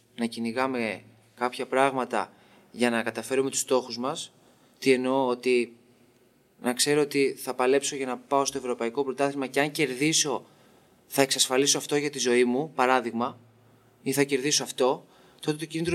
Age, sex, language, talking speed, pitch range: 20-39, male, Greek, 160 wpm, 120-165 Hz